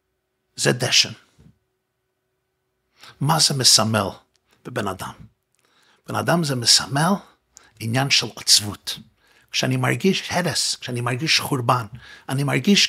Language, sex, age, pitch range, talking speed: Hebrew, male, 50-69, 135-195 Hz, 100 wpm